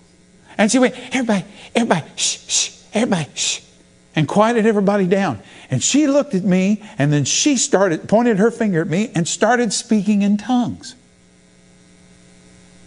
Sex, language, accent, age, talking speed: male, English, American, 50-69, 150 wpm